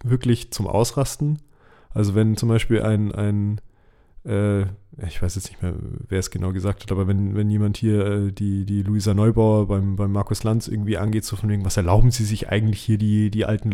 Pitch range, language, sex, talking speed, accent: 100-125 Hz, German, male, 210 wpm, German